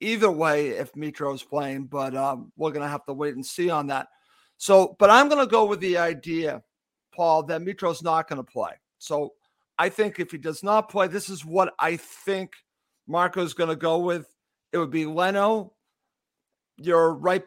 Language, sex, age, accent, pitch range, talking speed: English, male, 50-69, American, 160-185 Hz, 195 wpm